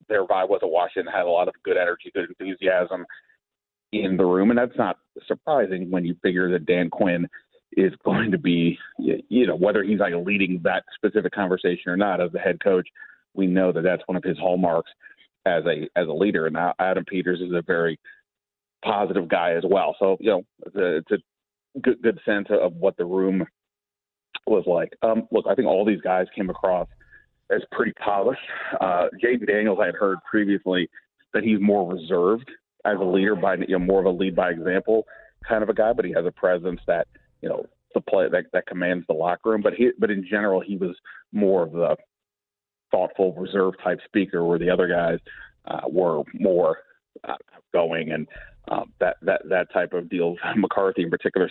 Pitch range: 90-100 Hz